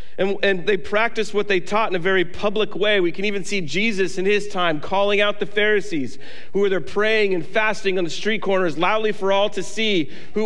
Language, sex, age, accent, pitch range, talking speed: English, male, 40-59, American, 175-210 Hz, 230 wpm